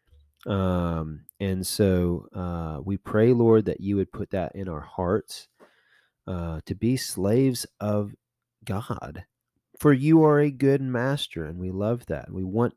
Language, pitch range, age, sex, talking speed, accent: English, 85-105 Hz, 30-49, male, 155 wpm, American